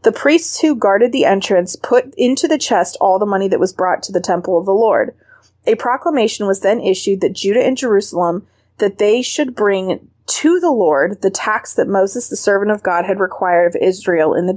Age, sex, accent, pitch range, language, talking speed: 20-39, female, American, 190-260 Hz, English, 215 wpm